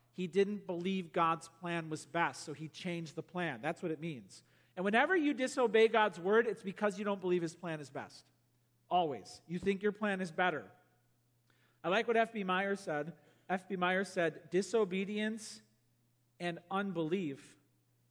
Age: 40-59